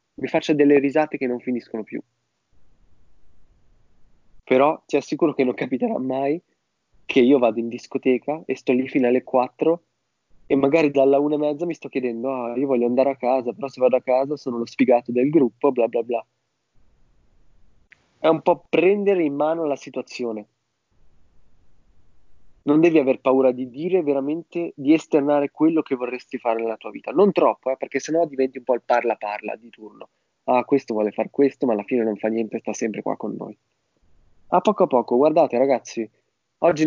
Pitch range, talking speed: 120-155 Hz, 185 wpm